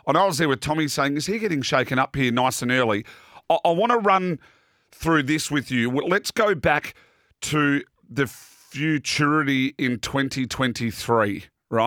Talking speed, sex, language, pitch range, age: 160 wpm, male, English, 125-160 Hz, 40-59